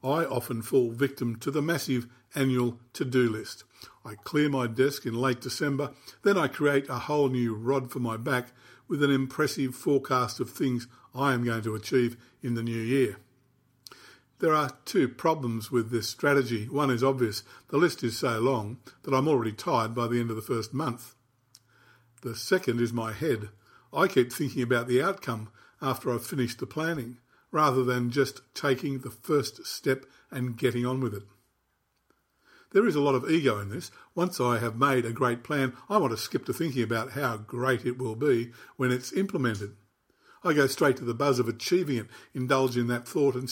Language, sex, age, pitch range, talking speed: English, male, 50-69, 120-140 Hz, 195 wpm